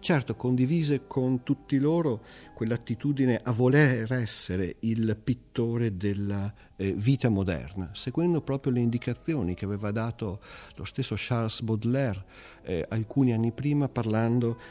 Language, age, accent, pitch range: Italian, 50-69, native, 100-135 Hz